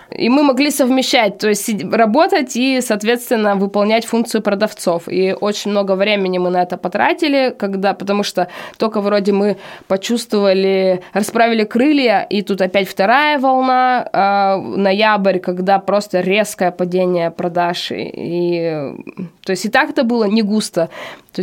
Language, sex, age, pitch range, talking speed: Russian, female, 20-39, 185-220 Hz, 135 wpm